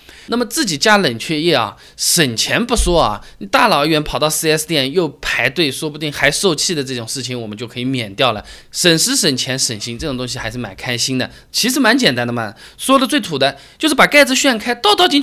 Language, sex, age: Chinese, male, 20-39